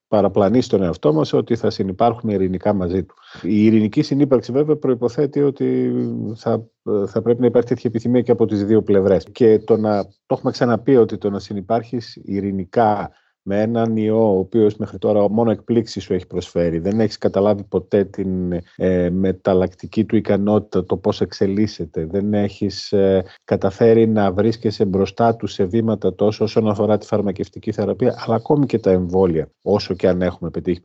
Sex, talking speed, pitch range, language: male, 175 wpm, 95-125 Hz, Greek